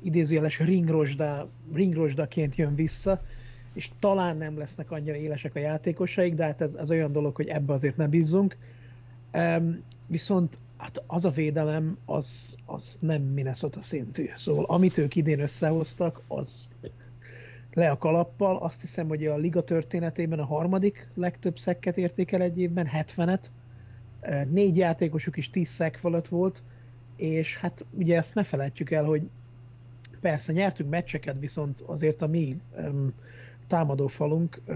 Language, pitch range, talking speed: Hungarian, 135-170 Hz, 140 wpm